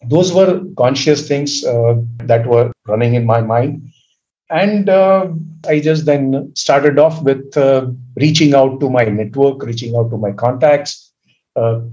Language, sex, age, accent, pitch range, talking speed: English, male, 50-69, Indian, 115-145 Hz, 155 wpm